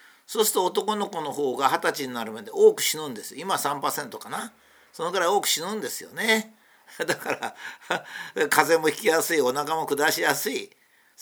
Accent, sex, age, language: native, male, 50-69, Japanese